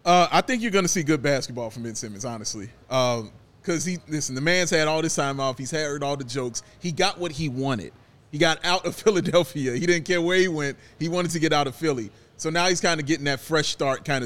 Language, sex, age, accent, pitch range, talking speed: English, male, 30-49, American, 145-190 Hz, 255 wpm